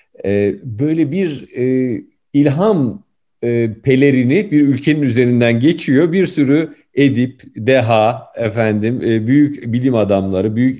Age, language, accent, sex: 50-69, Turkish, native, male